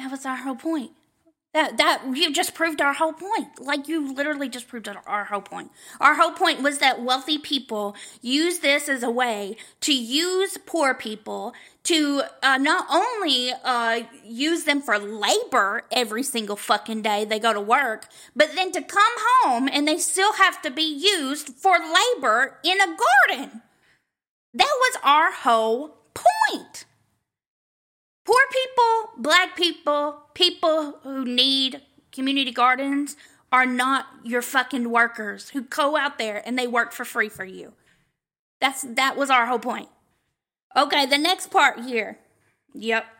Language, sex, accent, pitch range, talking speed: English, female, American, 235-320 Hz, 155 wpm